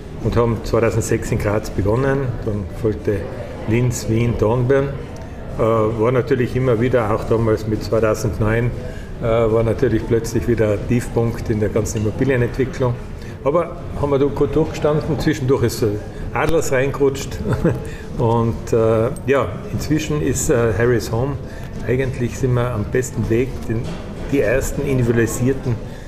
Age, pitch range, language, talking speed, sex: 50-69, 110-130 Hz, German, 125 wpm, male